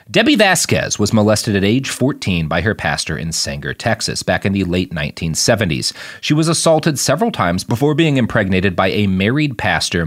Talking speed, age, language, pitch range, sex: 180 wpm, 30-49, English, 90-130 Hz, male